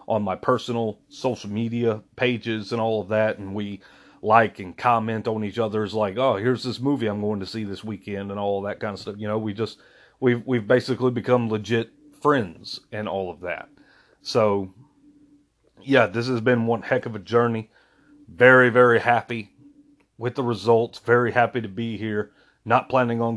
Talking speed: 185 wpm